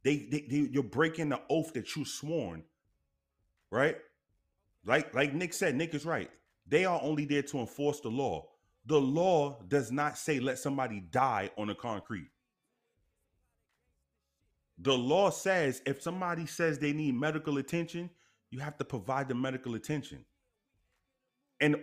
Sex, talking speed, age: male, 150 wpm, 30-49